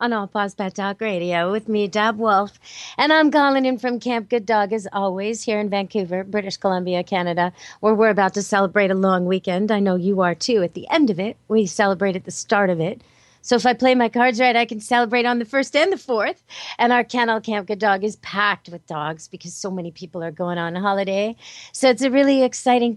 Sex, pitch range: female, 195-245 Hz